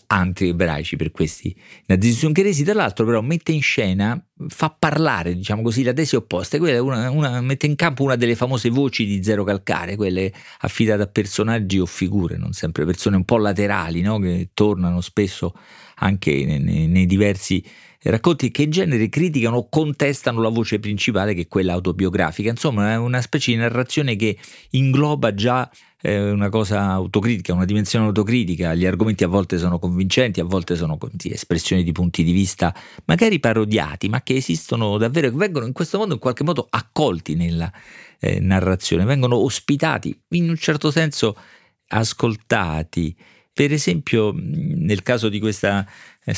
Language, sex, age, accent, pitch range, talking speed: Italian, male, 40-59, native, 95-140 Hz, 160 wpm